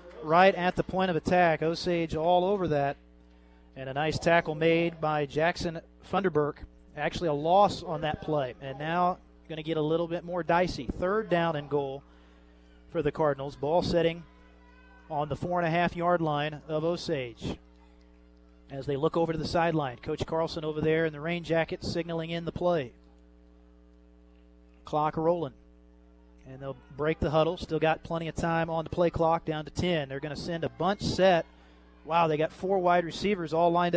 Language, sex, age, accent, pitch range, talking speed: English, male, 30-49, American, 145-180 Hz, 180 wpm